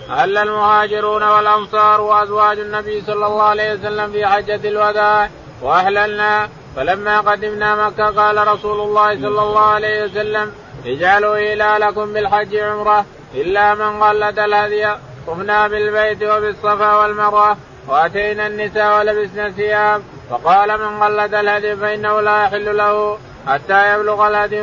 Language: Arabic